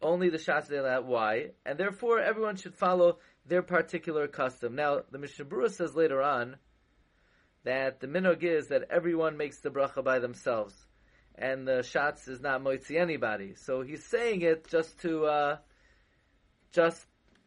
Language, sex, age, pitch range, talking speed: English, male, 30-49, 135-175 Hz, 160 wpm